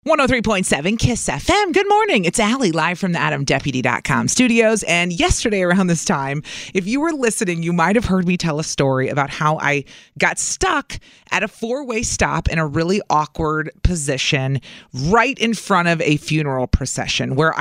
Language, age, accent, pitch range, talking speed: English, 30-49, American, 165-230 Hz, 170 wpm